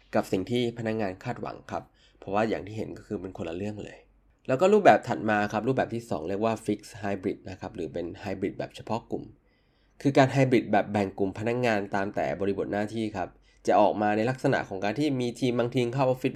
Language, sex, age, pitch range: Thai, male, 20-39, 100-125 Hz